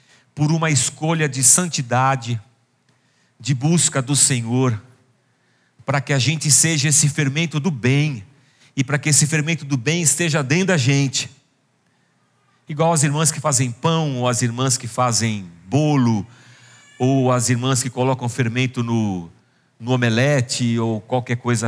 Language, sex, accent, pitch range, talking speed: Portuguese, male, Brazilian, 130-170 Hz, 145 wpm